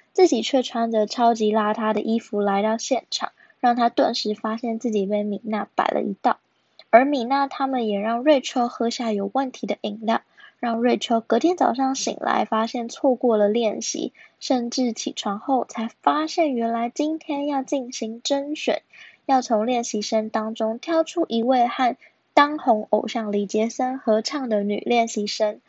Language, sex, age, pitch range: Chinese, female, 10-29, 215-260 Hz